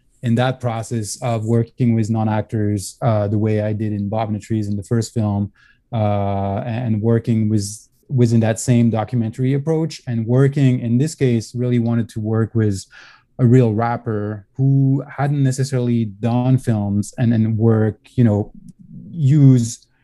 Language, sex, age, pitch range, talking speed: English, male, 20-39, 110-125 Hz, 160 wpm